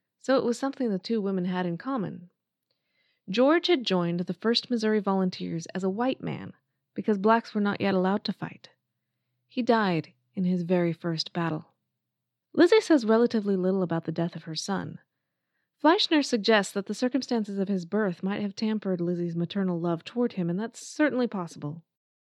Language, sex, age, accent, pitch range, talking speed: English, female, 20-39, American, 180-230 Hz, 180 wpm